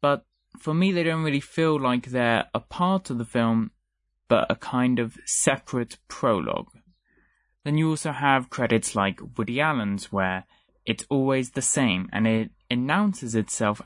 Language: English